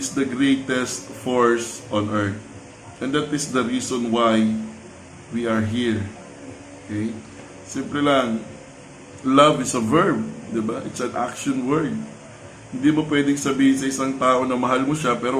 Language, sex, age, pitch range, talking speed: Filipino, male, 20-39, 115-135 Hz, 150 wpm